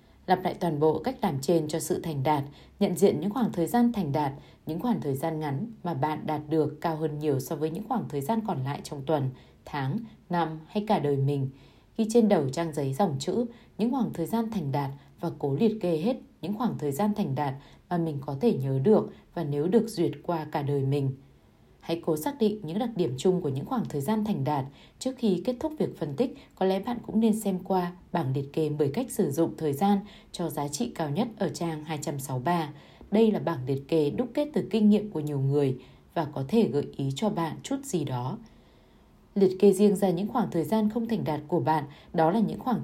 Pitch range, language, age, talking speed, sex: 155-215 Hz, Vietnamese, 20-39, 240 wpm, female